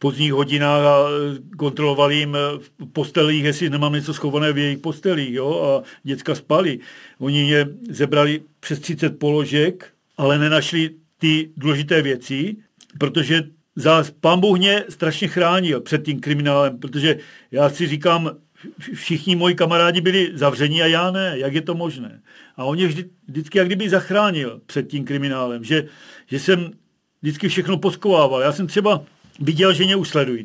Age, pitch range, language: 50-69, 140-170 Hz, Czech